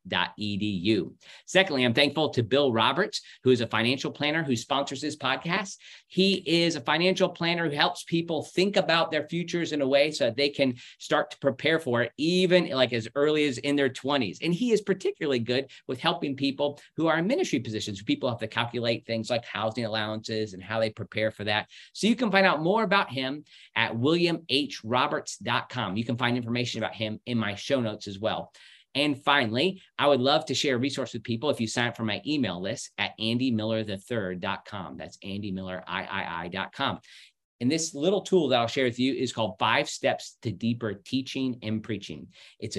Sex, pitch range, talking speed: male, 110-150 Hz, 195 wpm